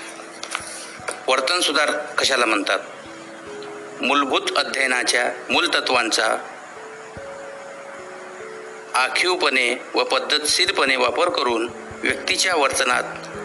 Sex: male